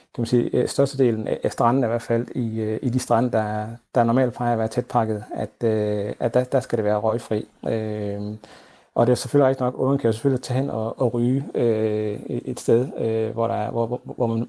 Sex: male